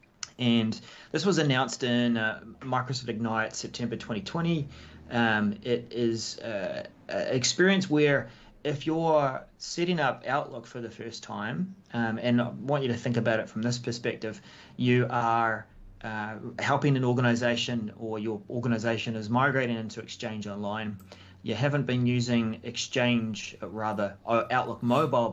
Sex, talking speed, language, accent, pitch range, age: male, 140 wpm, English, Australian, 110-130 Hz, 30-49